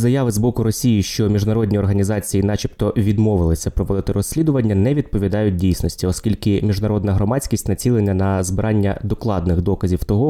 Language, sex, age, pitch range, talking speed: Ukrainian, male, 20-39, 95-110 Hz, 135 wpm